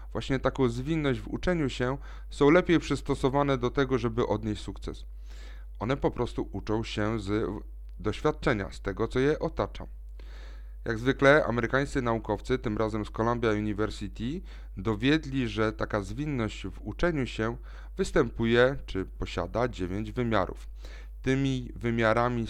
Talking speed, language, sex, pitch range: 130 wpm, Polish, male, 95-125 Hz